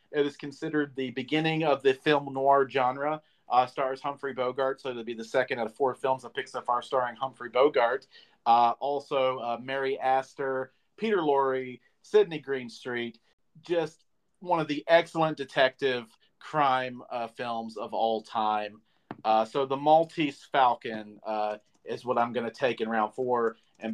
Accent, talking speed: American, 170 wpm